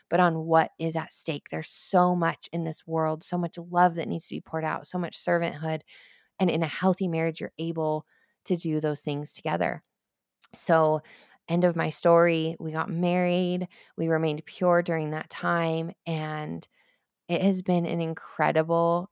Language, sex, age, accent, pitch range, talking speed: English, female, 20-39, American, 155-180 Hz, 175 wpm